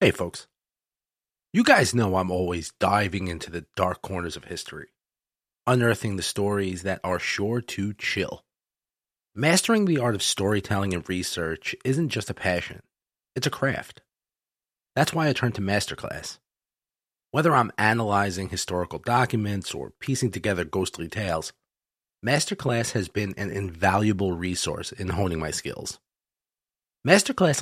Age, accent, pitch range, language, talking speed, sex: 30-49, American, 95-125 Hz, English, 135 wpm, male